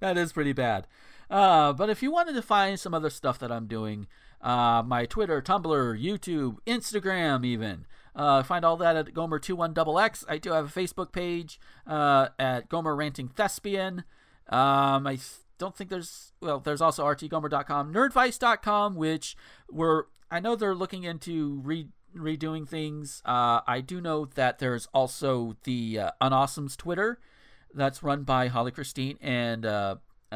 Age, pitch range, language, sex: 40-59, 130-170 Hz, English, male